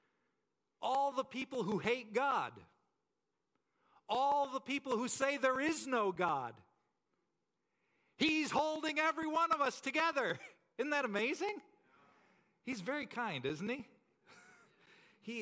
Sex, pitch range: male, 195-265 Hz